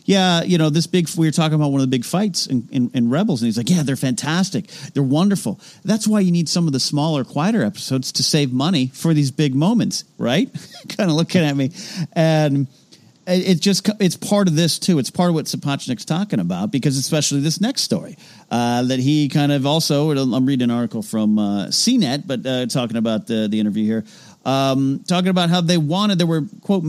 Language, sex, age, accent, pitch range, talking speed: English, male, 40-59, American, 130-180 Hz, 225 wpm